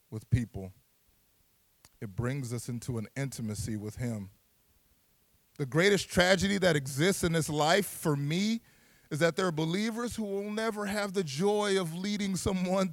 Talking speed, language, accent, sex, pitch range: 160 wpm, English, American, male, 110-180 Hz